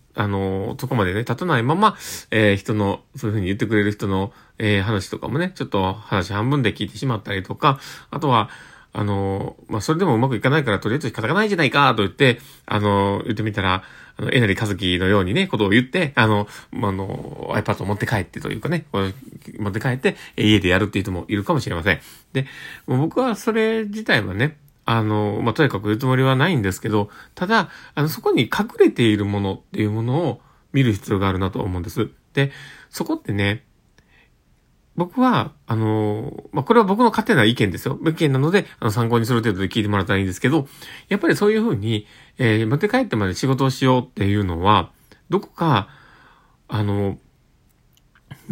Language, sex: Japanese, male